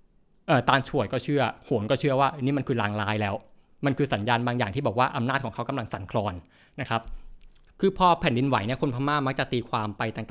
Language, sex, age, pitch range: Thai, male, 20-39, 115-140 Hz